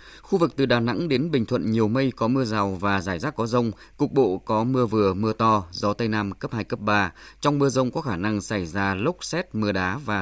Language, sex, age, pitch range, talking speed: Vietnamese, male, 20-39, 100-130 Hz, 265 wpm